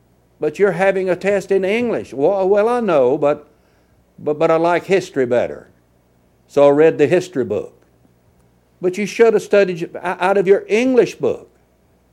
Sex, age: male, 60-79